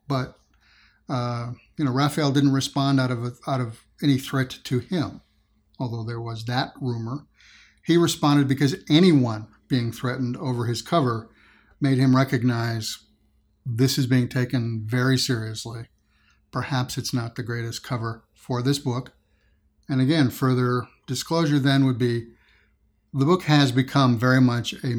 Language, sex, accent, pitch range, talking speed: English, male, American, 120-140 Hz, 150 wpm